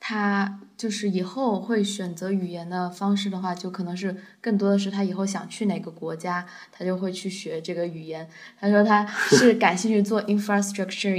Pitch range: 180-210 Hz